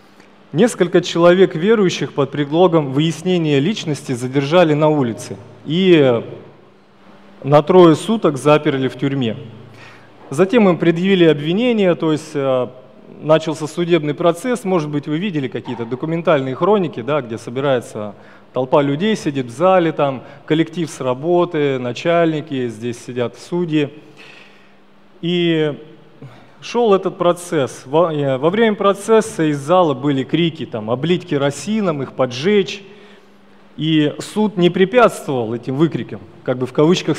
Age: 30-49